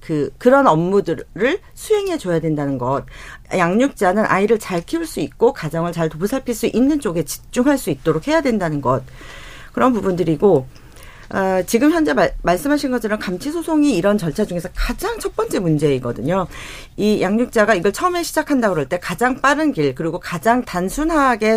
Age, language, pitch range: 40-59, Korean, 165-255 Hz